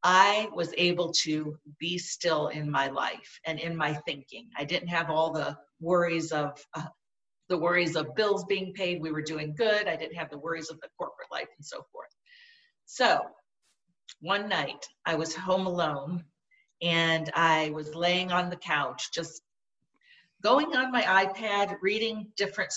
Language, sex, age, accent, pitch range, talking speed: English, female, 50-69, American, 160-195 Hz, 170 wpm